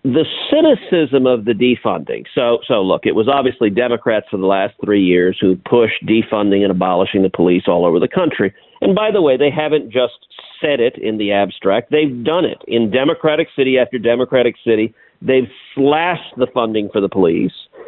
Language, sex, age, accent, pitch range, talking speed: English, male, 50-69, American, 110-160 Hz, 190 wpm